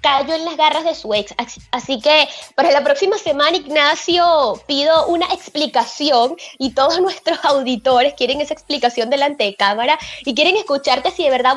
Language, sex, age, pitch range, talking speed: Spanish, female, 20-39, 240-315 Hz, 175 wpm